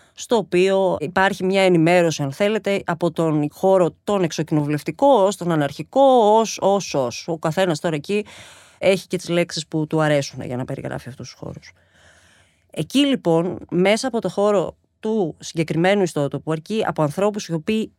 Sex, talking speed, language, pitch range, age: female, 165 wpm, Greek, 155-225 Hz, 30-49